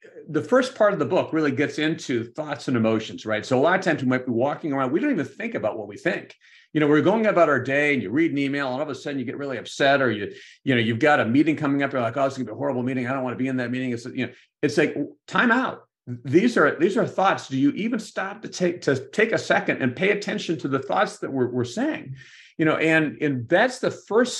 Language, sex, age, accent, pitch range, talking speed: English, male, 50-69, American, 125-165 Hz, 295 wpm